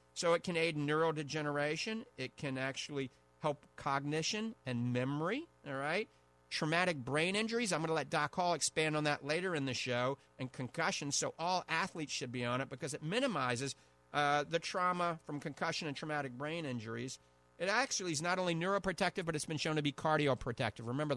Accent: American